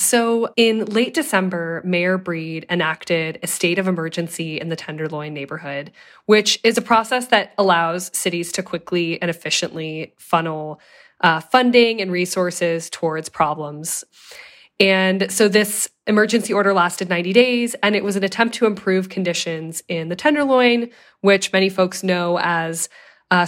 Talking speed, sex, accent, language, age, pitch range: 150 wpm, female, American, English, 20-39, 165-210 Hz